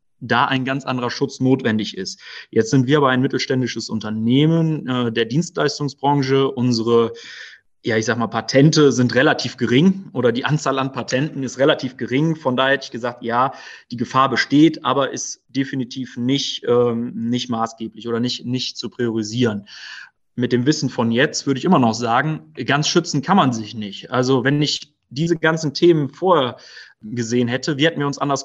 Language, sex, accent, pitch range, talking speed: German, male, German, 120-140 Hz, 180 wpm